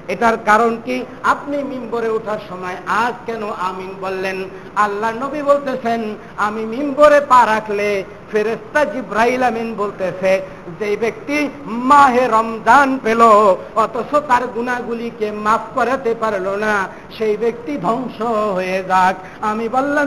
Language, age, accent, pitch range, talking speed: Bengali, 60-79, native, 205-285 Hz, 100 wpm